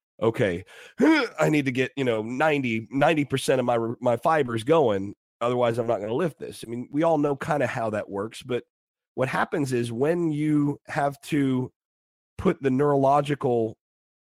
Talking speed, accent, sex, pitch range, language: 175 wpm, American, male, 110-140 Hz, English